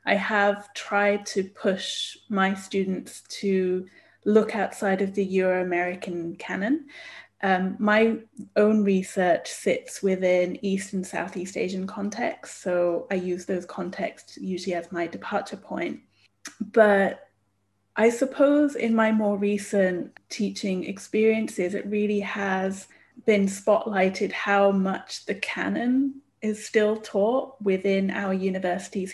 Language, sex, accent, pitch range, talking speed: English, female, British, 180-210 Hz, 120 wpm